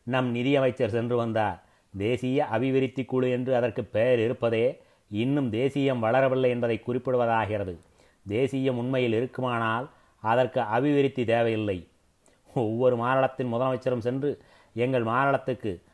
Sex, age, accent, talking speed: male, 30-49, native, 105 wpm